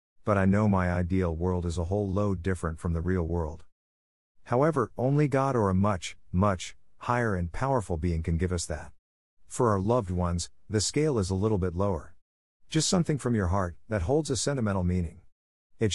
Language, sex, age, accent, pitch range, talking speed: English, male, 50-69, American, 85-115 Hz, 195 wpm